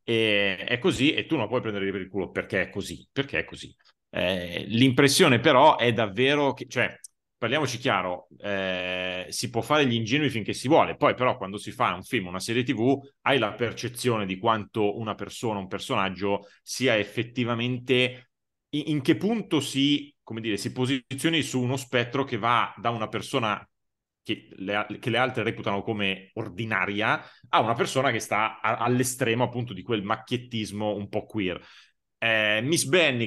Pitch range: 100-130 Hz